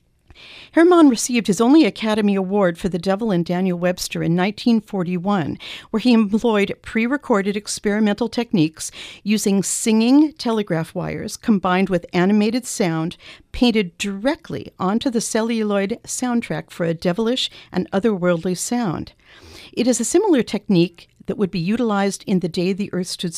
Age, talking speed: 50-69, 140 wpm